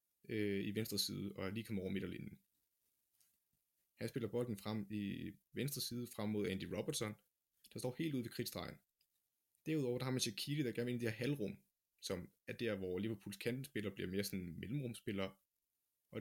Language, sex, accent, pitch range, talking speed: Danish, male, native, 100-125 Hz, 195 wpm